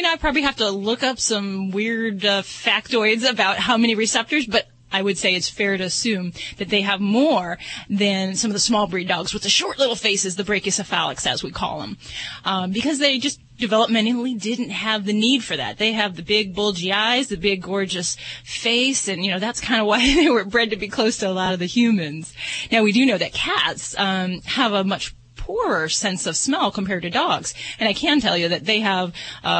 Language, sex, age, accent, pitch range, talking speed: English, female, 30-49, American, 185-225 Hz, 225 wpm